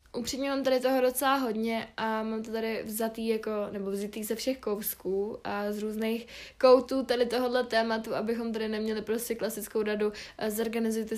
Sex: female